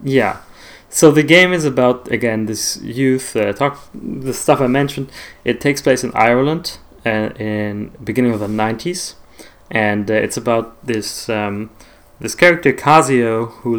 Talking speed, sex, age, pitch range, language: 155 wpm, male, 20-39, 105-125 Hz, English